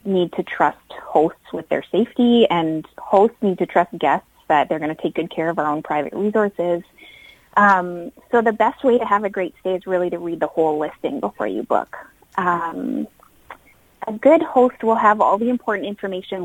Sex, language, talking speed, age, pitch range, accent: female, English, 200 wpm, 30-49, 175-230 Hz, American